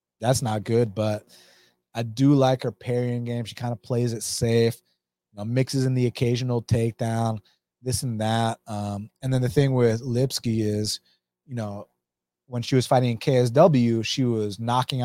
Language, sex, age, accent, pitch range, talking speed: English, male, 30-49, American, 105-130 Hz, 180 wpm